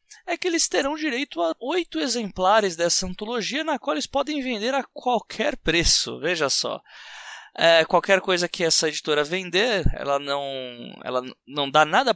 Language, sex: Portuguese, male